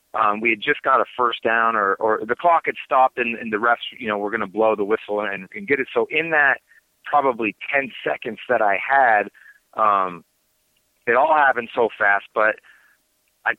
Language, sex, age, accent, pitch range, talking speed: English, male, 30-49, American, 110-135 Hz, 210 wpm